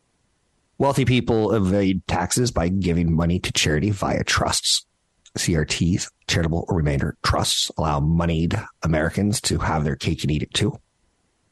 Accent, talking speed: American, 135 wpm